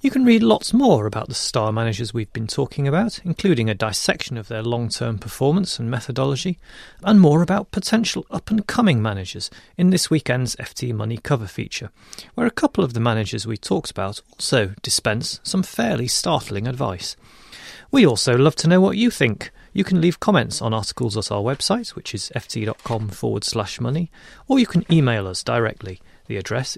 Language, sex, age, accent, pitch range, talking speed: English, male, 30-49, British, 110-175 Hz, 180 wpm